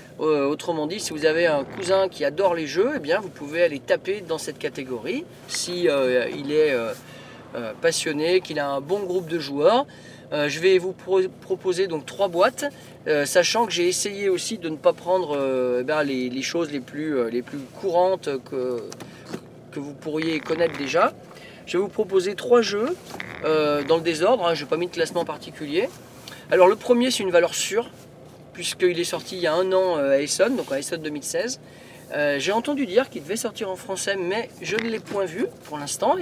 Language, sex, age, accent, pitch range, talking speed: French, male, 40-59, French, 145-190 Hz, 210 wpm